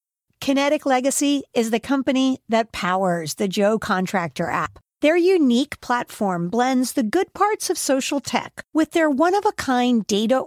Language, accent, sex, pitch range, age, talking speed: English, American, female, 225-315 Hz, 50-69, 145 wpm